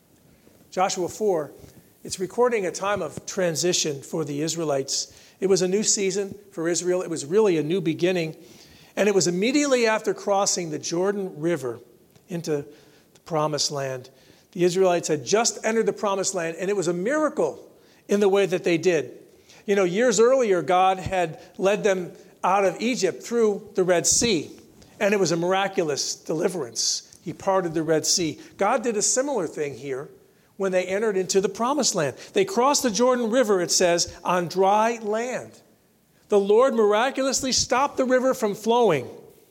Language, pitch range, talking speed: English, 180-230 Hz, 170 wpm